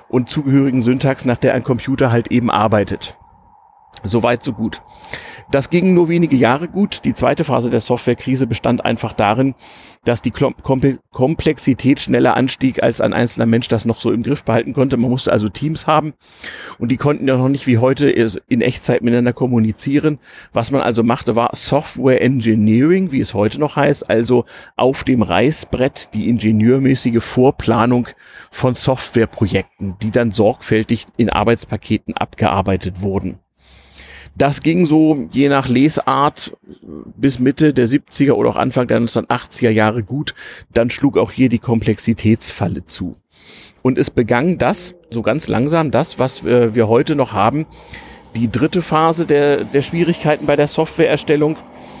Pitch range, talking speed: 115-140 Hz, 155 wpm